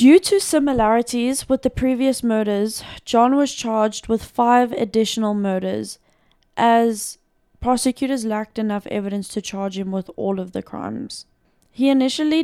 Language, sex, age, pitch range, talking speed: English, female, 10-29, 205-240 Hz, 140 wpm